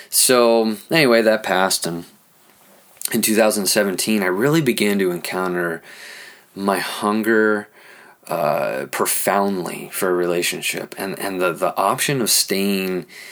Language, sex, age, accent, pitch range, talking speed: English, male, 20-39, American, 90-110 Hz, 115 wpm